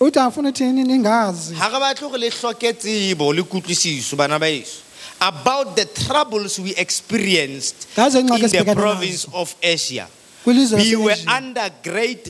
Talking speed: 70 wpm